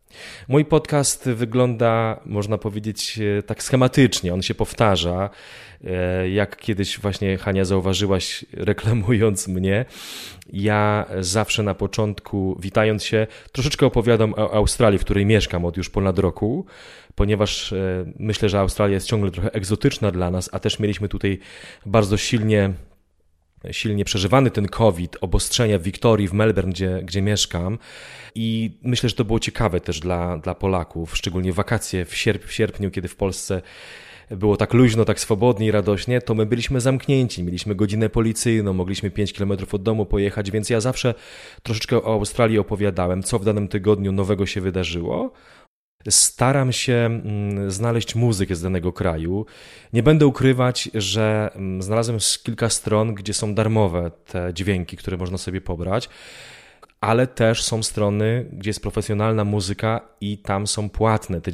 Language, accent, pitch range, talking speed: Polish, native, 95-115 Hz, 150 wpm